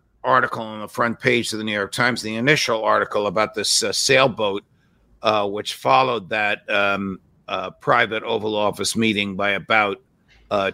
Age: 50-69